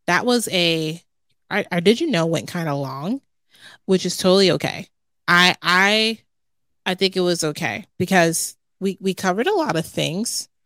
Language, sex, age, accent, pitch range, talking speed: English, female, 30-49, American, 160-190 Hz, 175 wpm